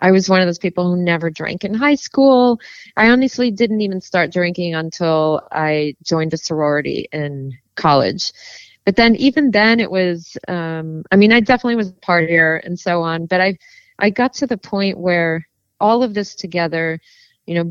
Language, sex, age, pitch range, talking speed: English, female, 30-49, 170-205 Hz, 190 wpm